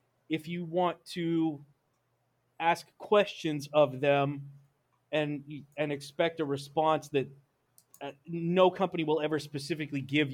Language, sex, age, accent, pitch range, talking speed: English, male, 30-49, American, 140-180 Hz, 115 wpm